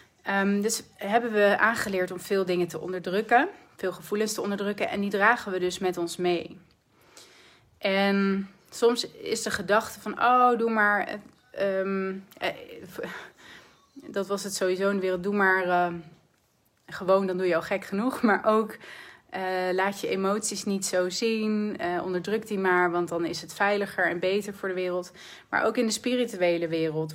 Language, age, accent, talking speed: Dutch, 30-49, Dutch, 170 wpm